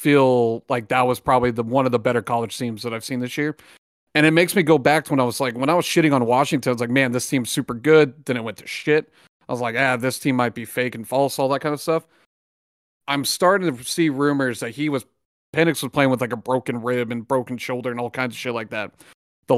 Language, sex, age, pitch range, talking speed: English, male, 40-59, 120-145 Hz, 275 wpm